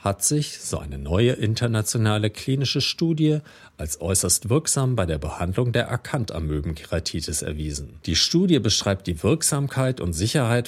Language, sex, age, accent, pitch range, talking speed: German, male, 40-59, German, 90-135 Hz, 135 wpm